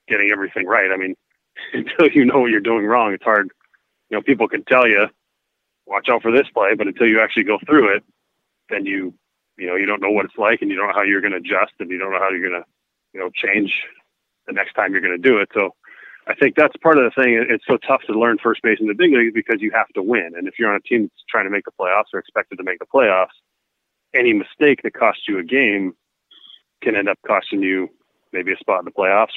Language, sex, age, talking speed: English, male, 30-49, 265 wpm